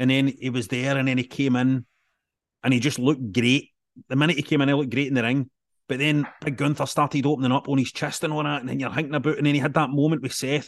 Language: English